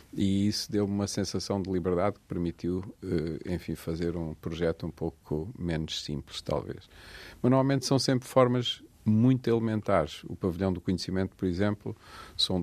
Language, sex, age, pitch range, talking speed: Portuguese, male, 50-69, 85-105 Hz, 150 wpm